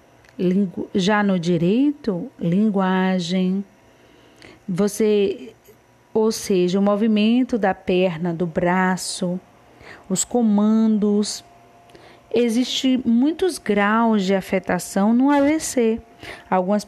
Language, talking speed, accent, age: Portuguese, 80 wpm, Brazilian, 40-59